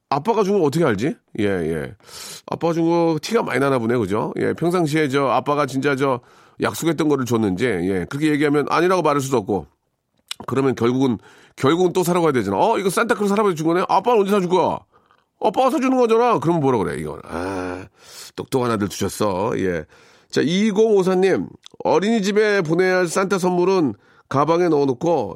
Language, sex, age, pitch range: Korean, male, 40-59, 140-190 Hz